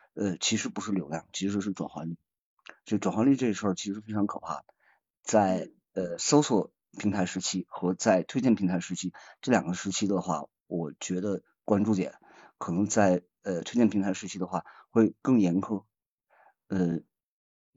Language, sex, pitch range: Chinese, male, 95-120 Hz